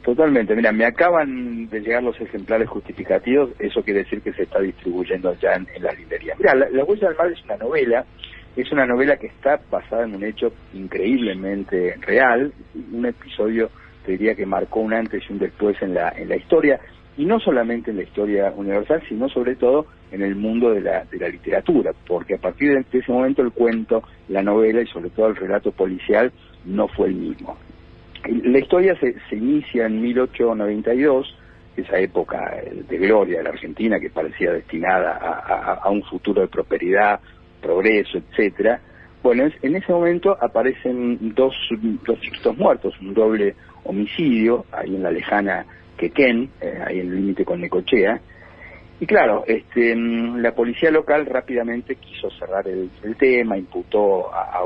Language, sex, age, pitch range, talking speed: Spanish, male, 50-69, 105-145 Hz, 175 wpm